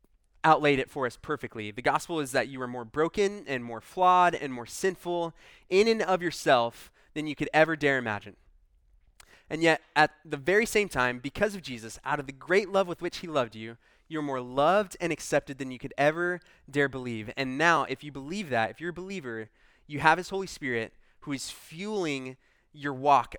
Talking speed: 205 wpm